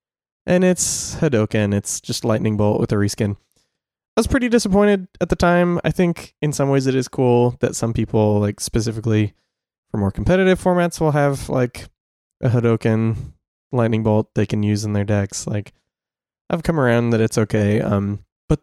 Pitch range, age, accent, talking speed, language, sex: 110-140 Hz, 20-39, American, 180 wpm, English, male